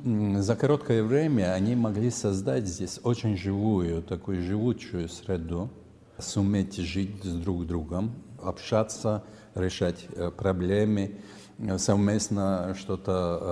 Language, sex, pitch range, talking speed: Russian, male, 90-110 Hz, 100 wpm